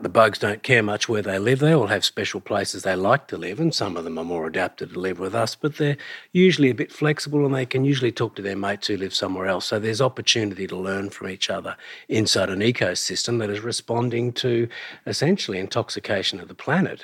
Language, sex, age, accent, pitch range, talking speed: English, male, 50-69, Australian, 100-125 Hz, 235 wpm